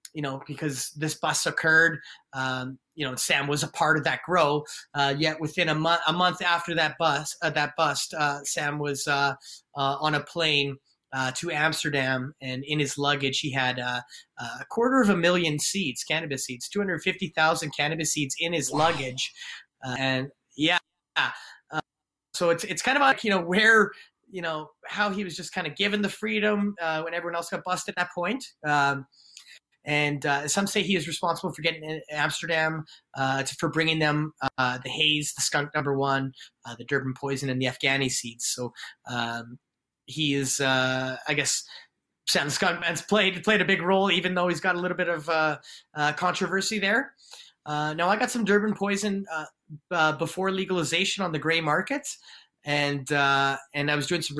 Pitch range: 140-175 Hz